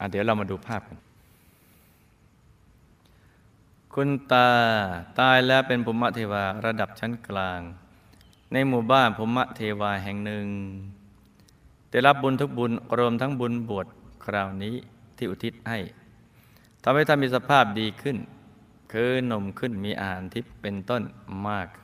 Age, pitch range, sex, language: 20-39, 100-125 Hz, male, Thai